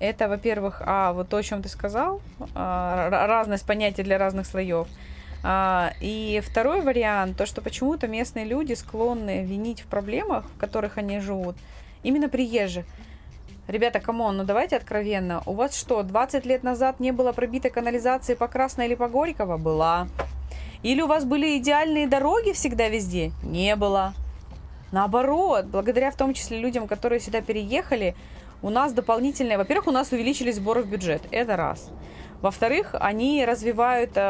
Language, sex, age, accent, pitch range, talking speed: Russian, female, 20-39, native, 195-250 Hz, 155 wpm